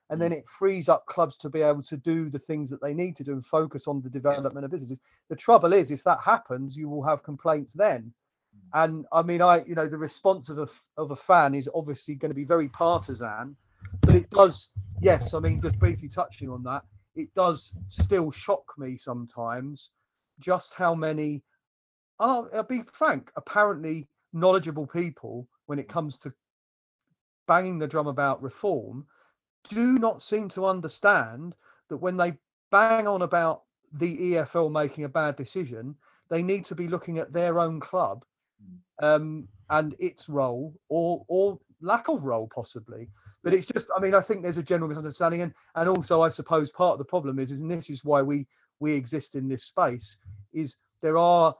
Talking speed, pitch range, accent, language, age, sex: 190 wpm, 140-175 Hz, British, English, 40-59, male